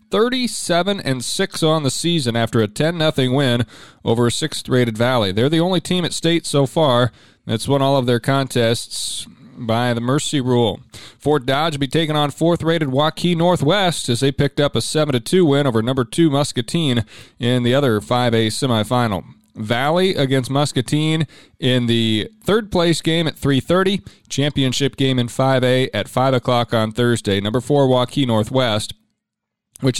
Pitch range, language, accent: 120-160 Hz, English, American